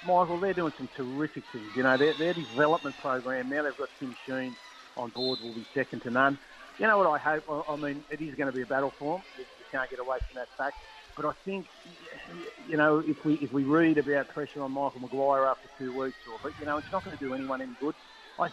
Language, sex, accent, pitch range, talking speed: English, male, Australian, 130-155 Hz, 255 wpm